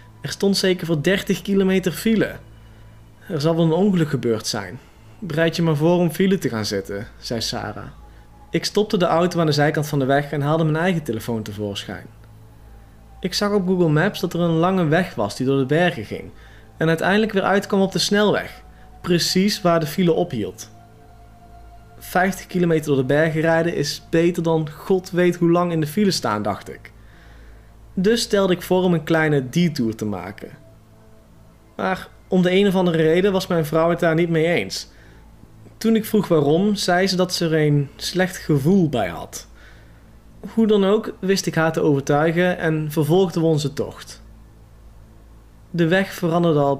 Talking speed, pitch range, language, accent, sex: 185 wpm, 115-180 Hz, Dutch, Dutch, male